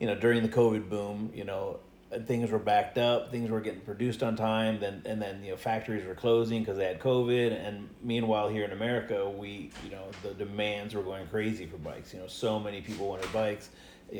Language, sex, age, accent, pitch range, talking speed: English, male, 30-49, American, 105-115 Hz, 225 wpm